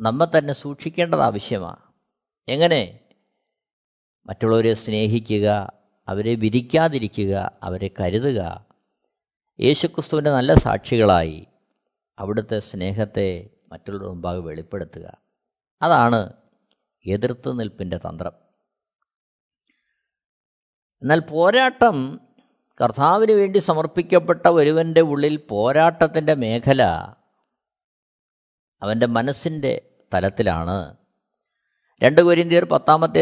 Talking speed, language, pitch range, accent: 65 wpm, Malayalam, 110-155 Hz, native